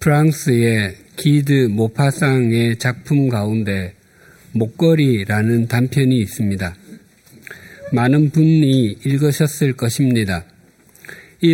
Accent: native